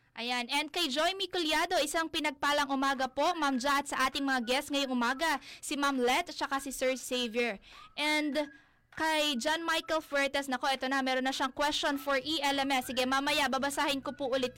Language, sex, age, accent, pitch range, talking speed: Filipino, female, 20-39, native, 265-305 Hz, 185 wpm